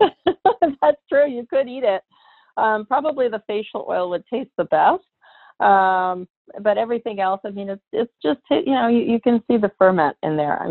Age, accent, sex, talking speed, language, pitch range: 40-59, American, female, 195 wpm, English, 175-210 Hz